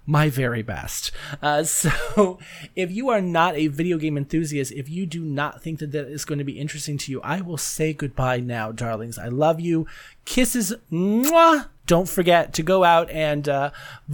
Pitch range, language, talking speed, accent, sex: 145-205 Hz, English, 185 wpm, American, male